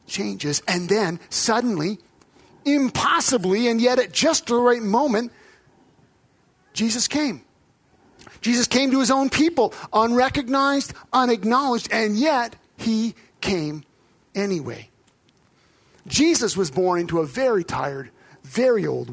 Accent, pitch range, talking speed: American, 200-270 Hz, 115 wpm